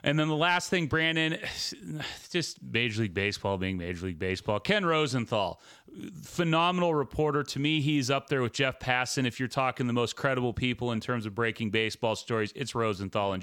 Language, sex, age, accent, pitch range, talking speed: English, male, 30-49, American, 115-140 Hz, 190 wpm